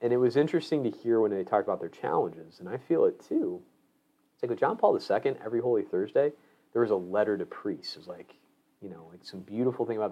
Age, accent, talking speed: 30-49, American, 250 wpm